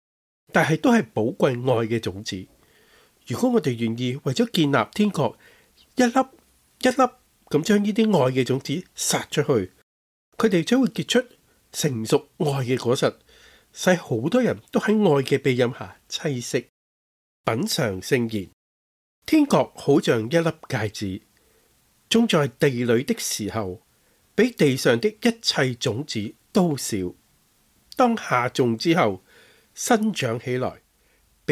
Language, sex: Chinese, male